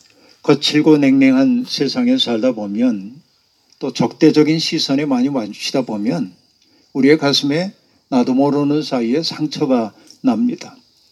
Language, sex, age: Korean, male, 50-69